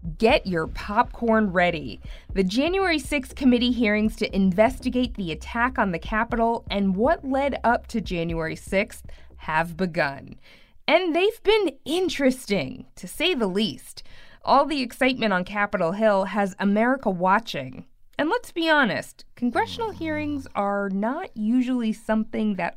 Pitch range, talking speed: 195-290 Hz, 140 wpm